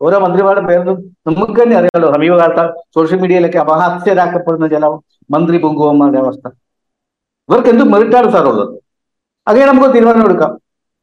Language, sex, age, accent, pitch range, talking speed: Malayalam, female, 60-79, native, 155-220 Hz, 115 wpm